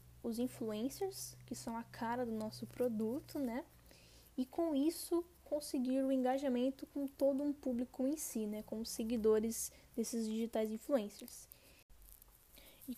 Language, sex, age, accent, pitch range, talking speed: Portuguese, female, 10-29, Brazilian, 230-275 Hz, 135 wpm